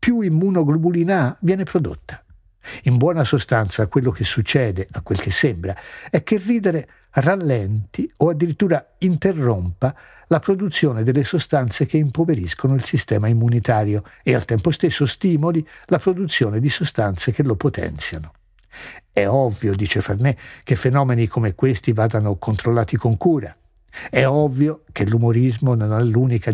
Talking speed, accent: 140 wpm, native